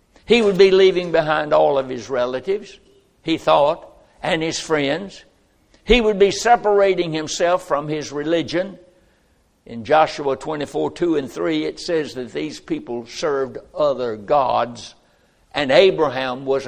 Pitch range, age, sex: 135-200 Hz, 60-79, male